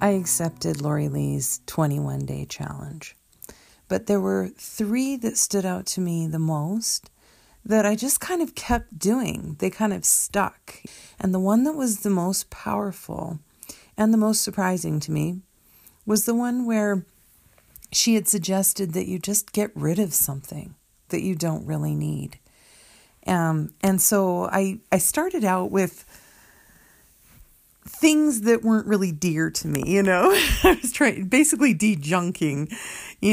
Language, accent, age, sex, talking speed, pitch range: English, American, 40-59, female, 155 wpm, 160-210 Hz